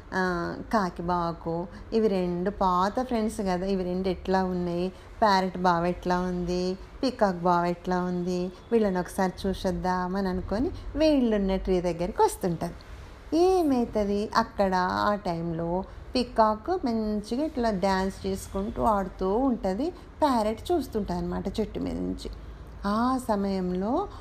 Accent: native